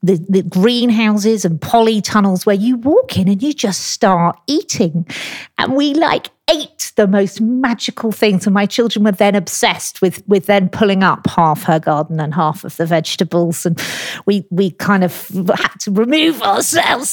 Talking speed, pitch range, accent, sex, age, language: 180 wpm, 180-220 Hz, British, female, 40-59, English